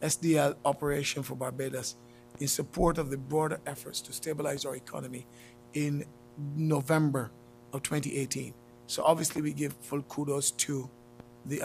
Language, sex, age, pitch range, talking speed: English, male, 50-69, 125-160 Hz, 135 wpm